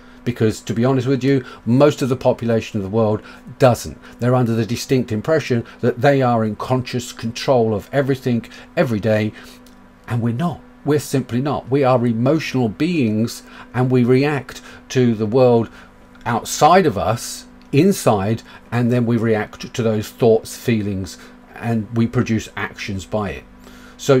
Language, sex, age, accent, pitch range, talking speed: English, male, 40-59, British, 110-130 Hz, 160 wpm